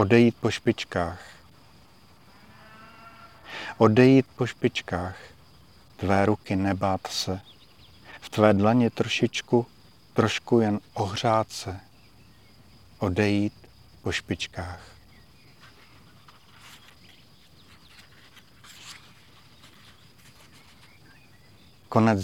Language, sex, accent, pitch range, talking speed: Czech, male, native, 95-115 Hz, 60 wpm